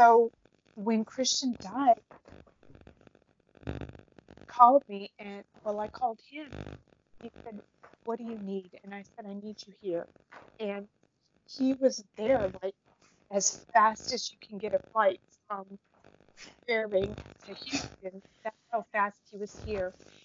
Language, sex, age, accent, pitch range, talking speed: English, female, 30-49, American, 195-240 Hz, 145 wpm